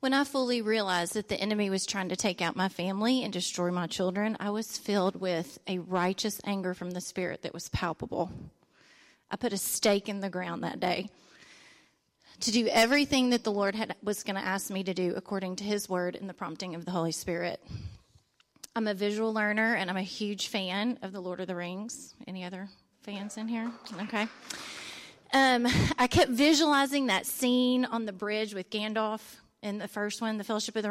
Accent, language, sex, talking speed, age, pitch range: American, English, female, 205 wpm, 30-49, 190-230 Hz